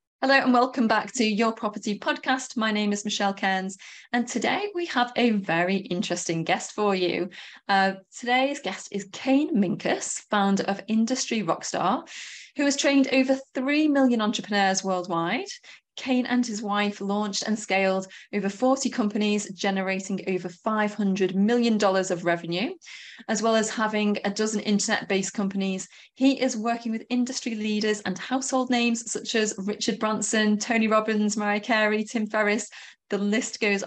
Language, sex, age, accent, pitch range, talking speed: English, female, 20-39, British, 195-240 Hz, 160 wpm